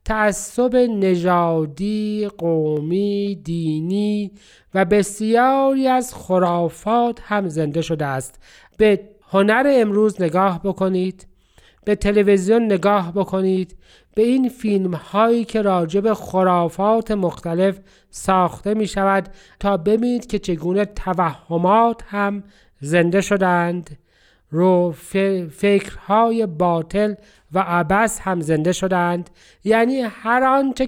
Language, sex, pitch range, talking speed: Persian, male, 180-230 Hz, 100 wpm